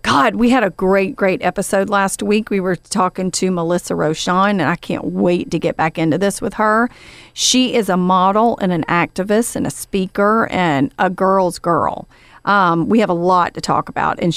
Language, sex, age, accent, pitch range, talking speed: English, female, 40-59, American, 180-215 Hz, 205 wpm